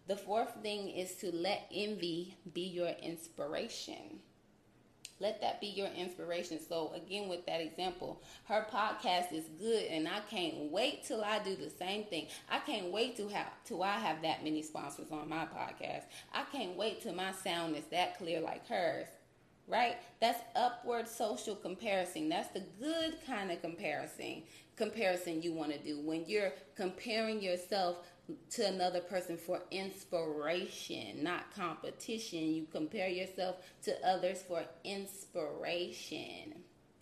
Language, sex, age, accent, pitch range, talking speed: English, female, 20-39, American, 170-215 Hz, 150 wpm